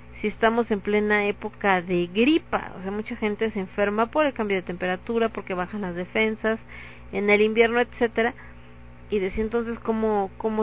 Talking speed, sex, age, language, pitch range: 175 wpm, female, 40-59, Spanish, 180-220 Hz